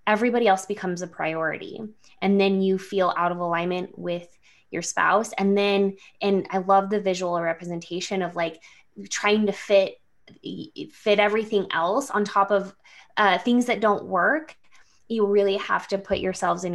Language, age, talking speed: English, 20-39, 165 wpm